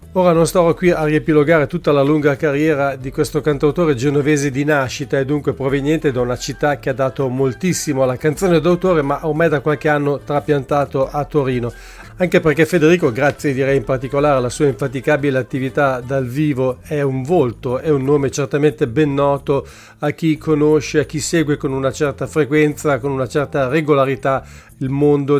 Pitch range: 135-155 Hz